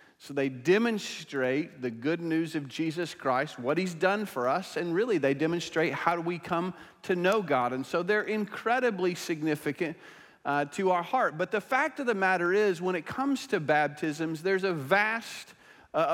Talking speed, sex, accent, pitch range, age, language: 185 wpm, male, American, 140-195 Hz, 40-59, English